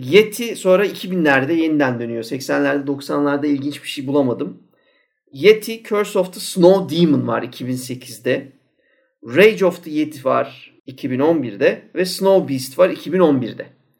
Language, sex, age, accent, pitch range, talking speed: Turkish, male, 50-69, native, 140-190 Hz, 130 wpm